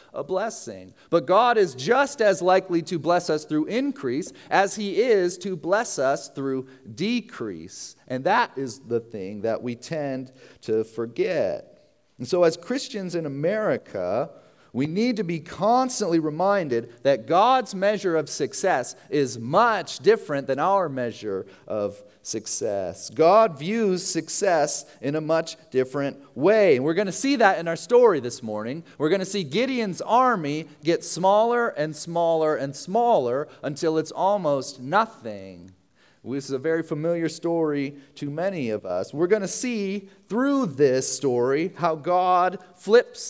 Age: 40-59